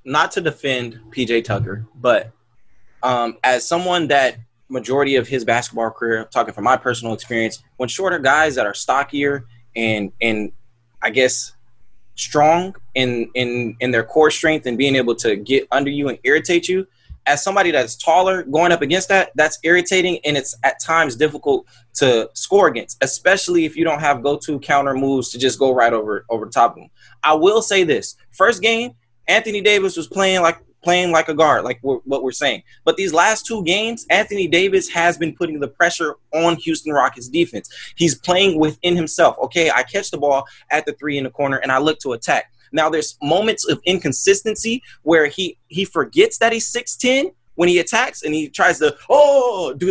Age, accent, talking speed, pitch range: 20-39, American, 190 wpm, 130-195 Hz